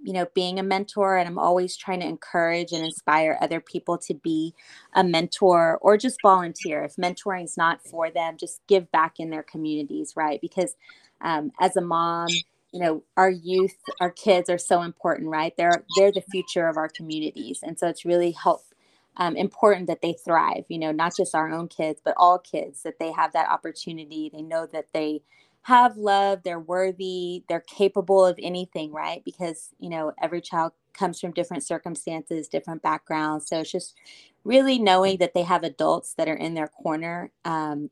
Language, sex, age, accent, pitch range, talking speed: English, female, 20-39, American, 160-185 Hz, 190 wpm